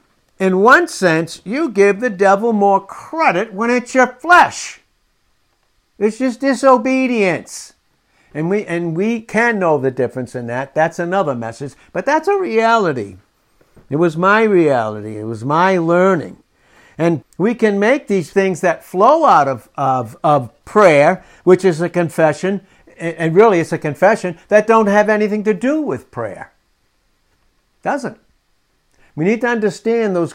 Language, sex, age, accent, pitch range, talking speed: English, male, 60-79, American, 140-195 Hz, 155 wpm